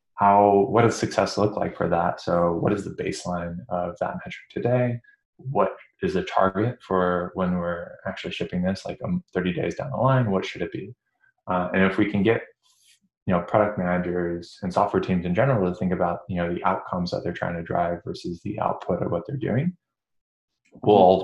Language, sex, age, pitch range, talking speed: English, male, 20-39, 85-105 Hz, 205 wpm